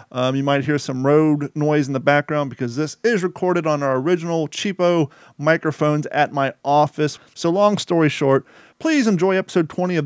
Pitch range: 130-160 Hz